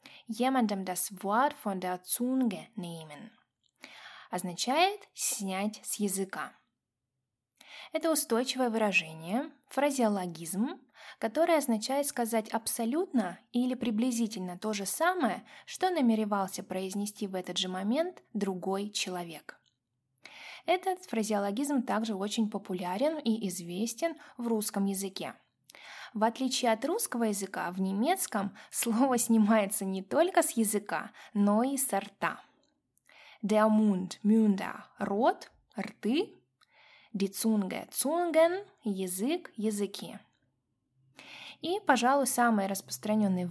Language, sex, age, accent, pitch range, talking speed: Russian, female, 20-39, native, 195-255 Hz, 95 wpm